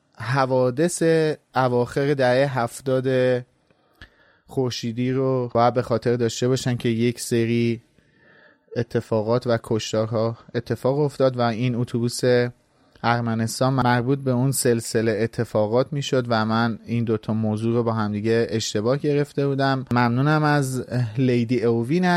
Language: Persian